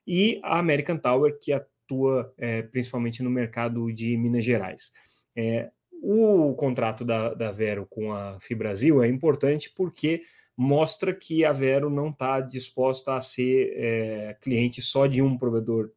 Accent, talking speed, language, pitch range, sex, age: Brazilian, 140 wpm, Portuguese, 110-135 Hz, male, 30-49